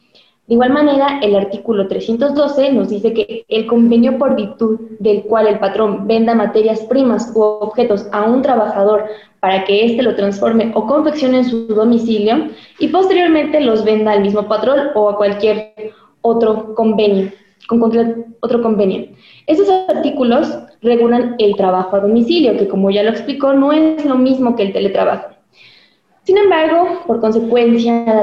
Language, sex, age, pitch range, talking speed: Spanish, female, 20-39, 215-265 Hz, 160 wpm